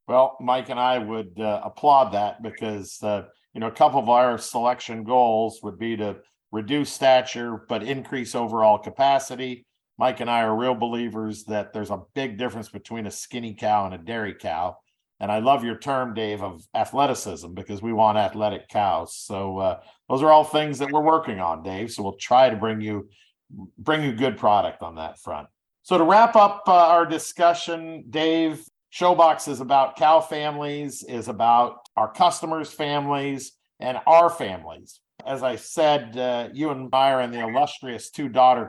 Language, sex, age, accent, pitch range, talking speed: English, male, 50-69, American, 115-145 Hz, 180 wpm